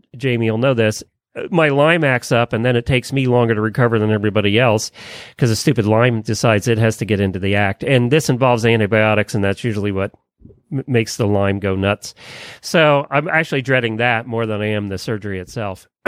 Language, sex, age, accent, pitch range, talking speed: English, male, 40-59, American, 115-150 Hz, 215 wpm